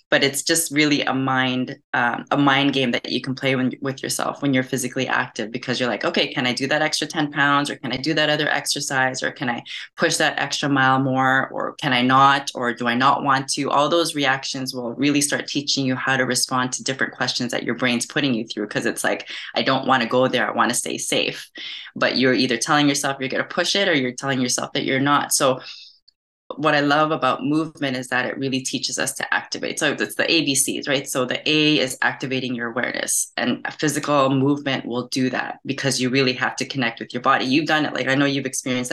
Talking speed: 245 wpm